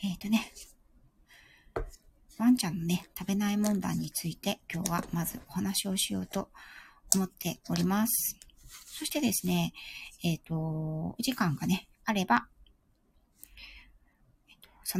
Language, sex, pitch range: Japanese, female, 170-225 Hz